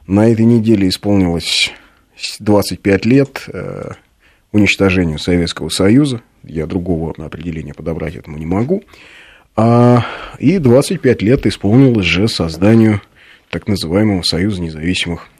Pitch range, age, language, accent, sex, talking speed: 85-110 Hz, 30-49, Russian, native, male, 105 wpm